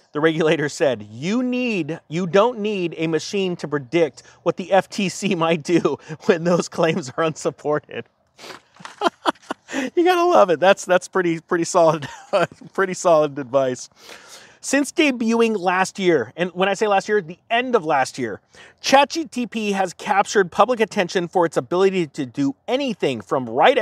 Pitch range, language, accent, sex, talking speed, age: 160-195 Hz, English, American, male, 155 wpm, 30-49